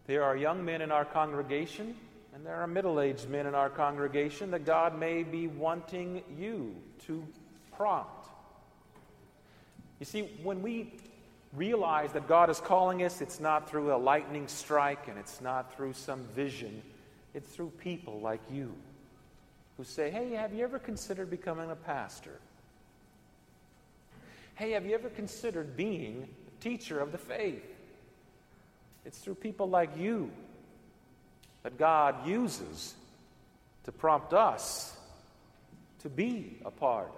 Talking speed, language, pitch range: 140 wpm, English, 145-200 Hz